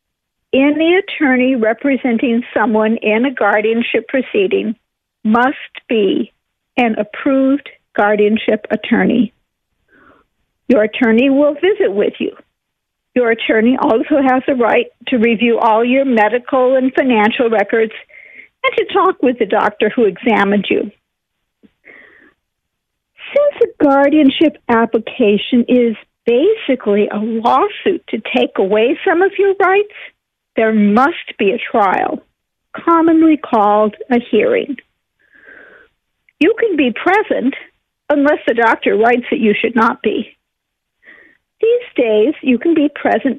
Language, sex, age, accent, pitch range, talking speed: English, female, 50-69, American, 230-315 Hz, 120 wpm